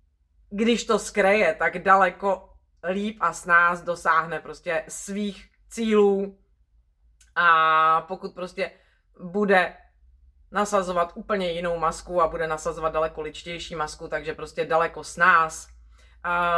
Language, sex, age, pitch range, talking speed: Czech, female, 30-49, 140-190 Hz, 120 wpm